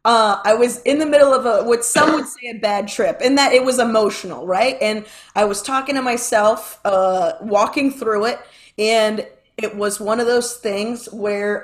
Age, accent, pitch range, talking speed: 30-49, American, 215-280 Hz, 200 wpm